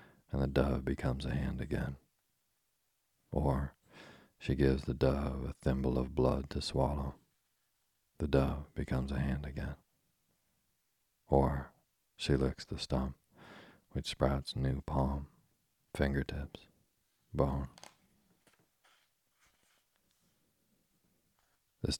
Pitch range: 65-70 Hz